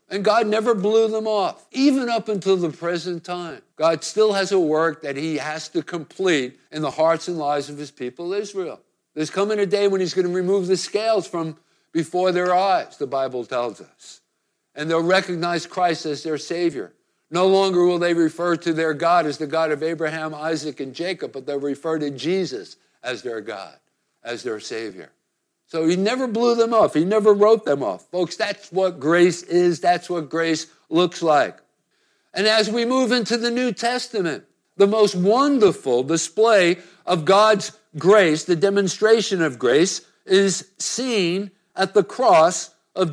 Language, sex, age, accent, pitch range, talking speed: English, male, 60-79, American, 165-205 Hz, 180 wpm